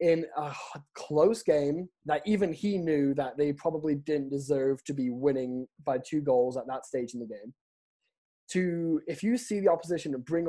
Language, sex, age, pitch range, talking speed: English, male, 20-39, 140-180 Hz, 185 wpm